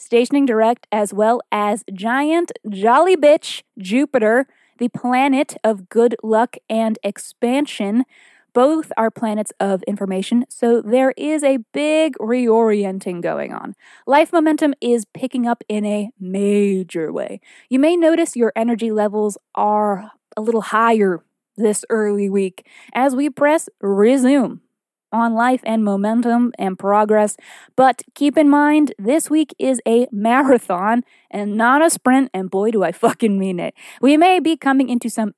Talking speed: 150 wpm